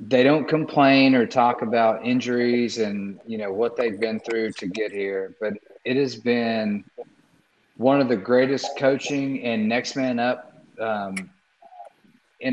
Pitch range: 110-135 Hz